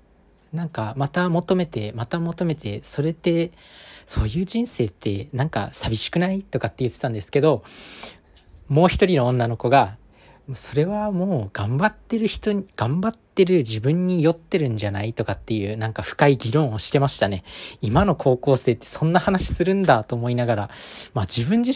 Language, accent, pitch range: Japanese, native, 110-170 Hz